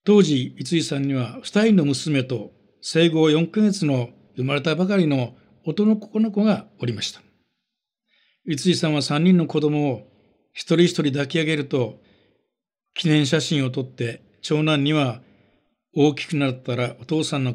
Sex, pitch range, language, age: male, 125-160 Hz, Japanese, 60-79